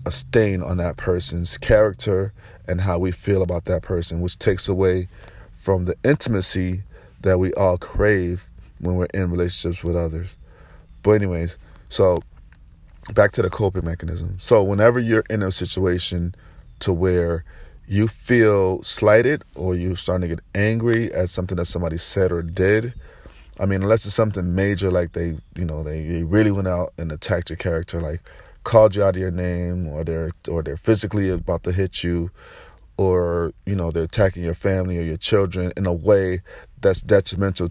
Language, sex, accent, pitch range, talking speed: English, male, American, 85-100 Hz, 175 wpm